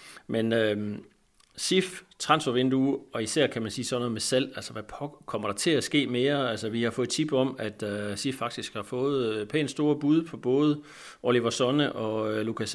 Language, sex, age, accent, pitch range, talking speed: Danish, male, 40-59, native, 110-135 Hz, 205 wpm